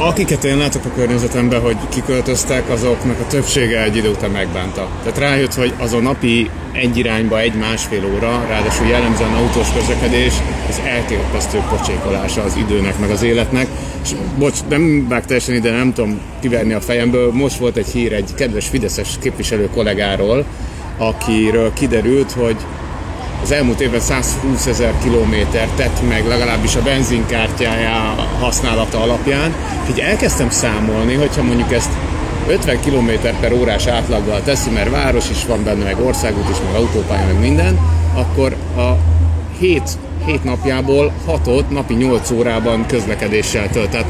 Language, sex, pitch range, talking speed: Hungarian, male, 100-125 Hz, 145 wpm